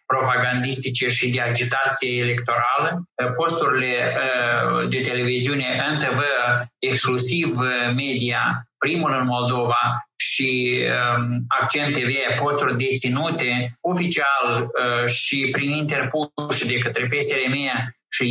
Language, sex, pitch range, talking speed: Romanian, male, 125-140 Hz, 90 wpm